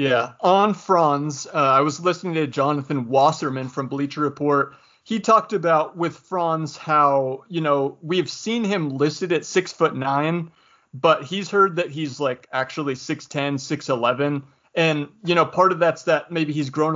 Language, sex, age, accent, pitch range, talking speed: English, male, 30-49, American, 140-170 Hz, 175 wpm